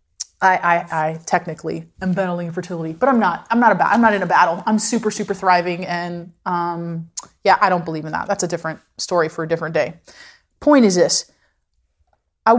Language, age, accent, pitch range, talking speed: English, 30-49, American, 175-240 Hz, 205 wpm